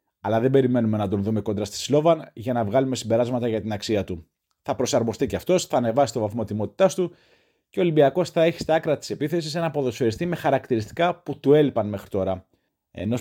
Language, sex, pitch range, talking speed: Greek, male, 105-145 Hz, 210 wpm